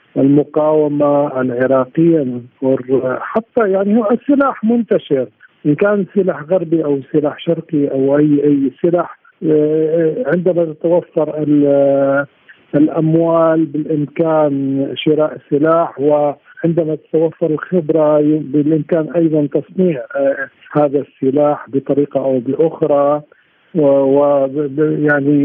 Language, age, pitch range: Arabic, 50-69, 140-155 Hz